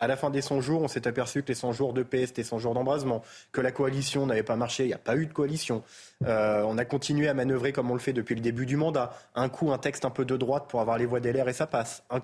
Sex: male